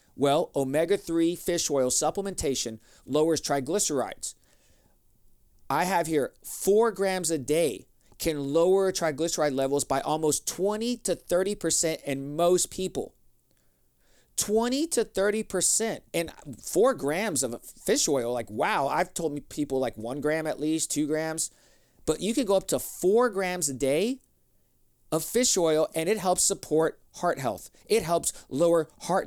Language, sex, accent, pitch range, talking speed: English, male, American, 150-195 Hz, 150 wpm